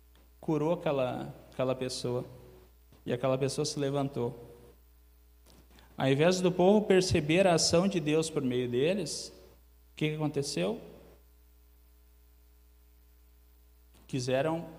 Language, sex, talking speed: Portuguese, male, 105 wpm